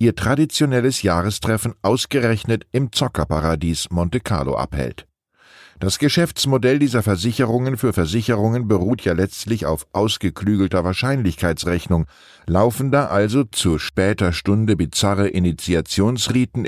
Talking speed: 105 wpm